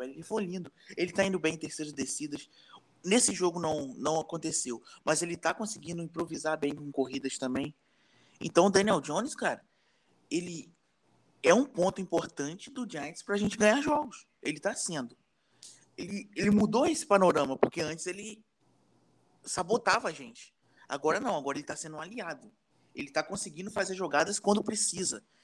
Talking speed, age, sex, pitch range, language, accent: 165 wpm, 20-39, male, 155-210 Hz, Portuguese, Brazilian